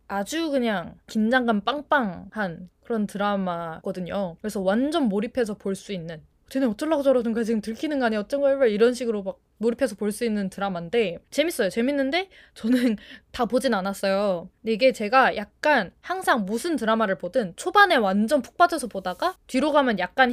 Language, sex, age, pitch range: Korean, female, 20-39, 200-275 Hz